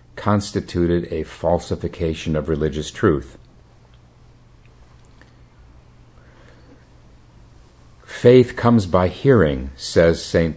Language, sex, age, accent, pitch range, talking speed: English, male, 50-69, American, 75-100 Hz, 70 wpm